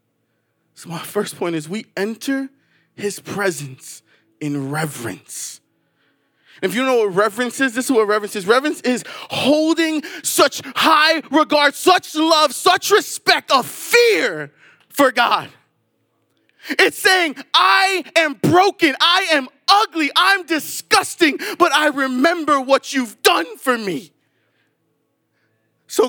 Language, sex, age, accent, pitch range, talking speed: English, male, 20-39, American, 225-330 Hz, 130 wpm